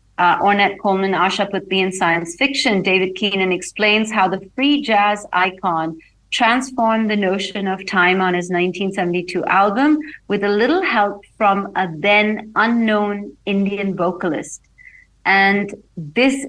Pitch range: 185-225 Hz